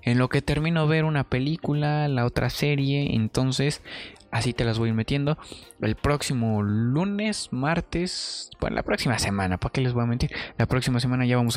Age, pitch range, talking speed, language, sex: 20-39, 115-145 Hz, 180 wpm, Spanish, male